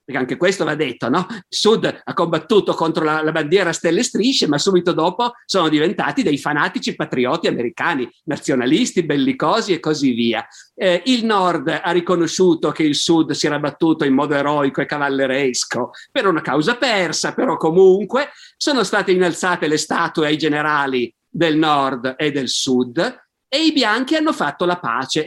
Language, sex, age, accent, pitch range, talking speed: Italian, male, 50-69, native, 150-195 Hz, 170 wpm